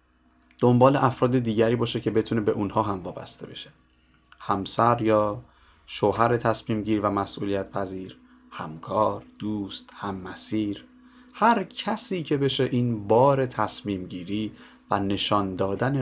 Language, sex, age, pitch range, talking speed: Persian, male, 30-49, 100-135 Hz, 125 wpm